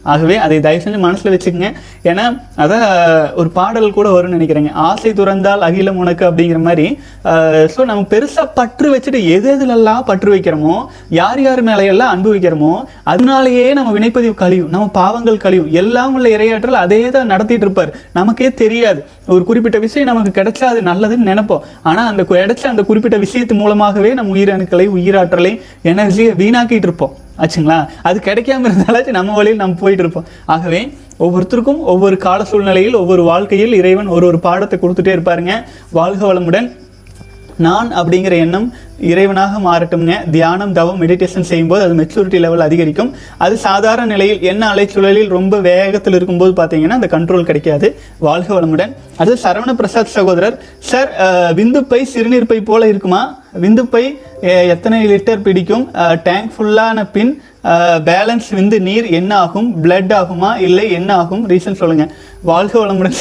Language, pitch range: Tamil, 175-225 Hz